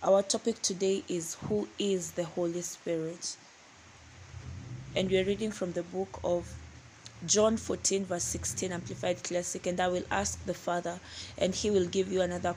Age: 20-39